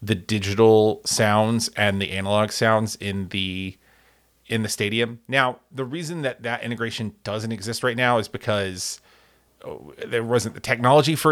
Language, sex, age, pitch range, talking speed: English, male, 30-49, 100-125 Hz, 160 wpm